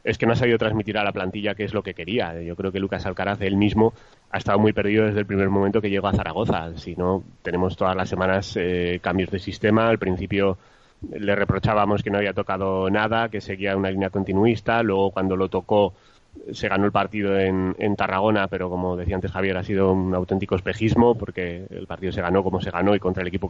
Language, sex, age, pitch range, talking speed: Spanish, male, 30-49, 95-105 Hz, 230 wpm